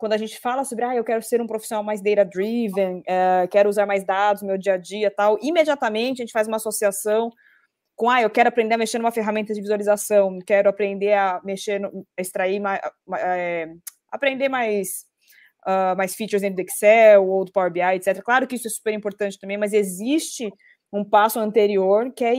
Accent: Brazilian